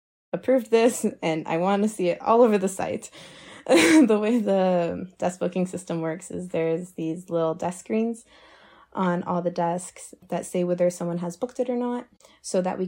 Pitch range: 175-195 Hz